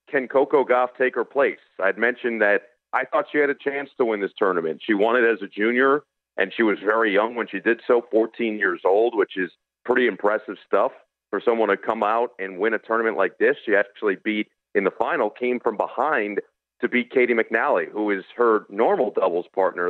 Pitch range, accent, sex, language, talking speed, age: 105-135 Hz, American, male, English, 215 wpm, 40-59